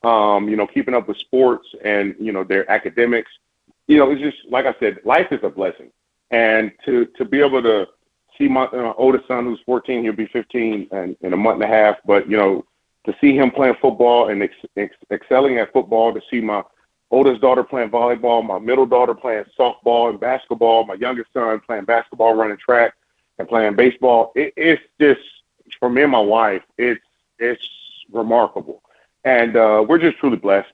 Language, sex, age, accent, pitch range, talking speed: English, male, 30-49, American, 110-130 Hz, 195 wpm